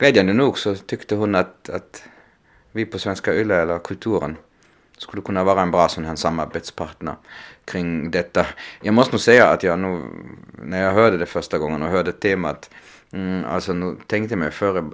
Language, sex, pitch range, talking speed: Finnish, male, 80-95 Hz, 175 wpm